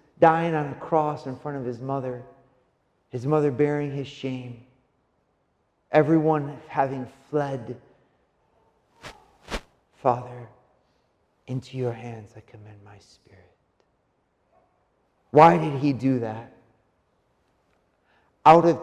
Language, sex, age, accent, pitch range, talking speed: English, male, 50-69, American, 130-210 Hz, 100 wpm